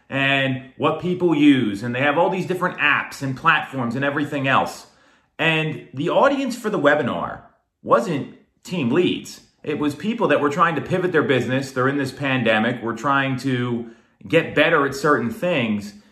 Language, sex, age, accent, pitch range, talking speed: English, male, 30-49, American, 135-180 Hz, 175 wpm